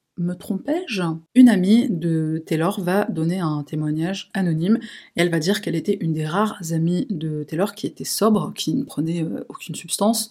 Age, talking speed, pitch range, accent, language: 30-49, 180 wpm, 160-195 Hz, French, French